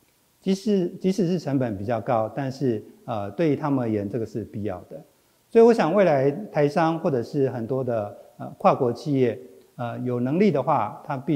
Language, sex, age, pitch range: Chinese, male, 50-69, 115-160 Hz